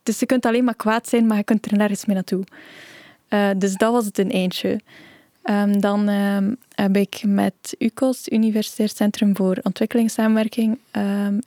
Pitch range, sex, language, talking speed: 195-220 Hz, female, Dutch, 175 wpm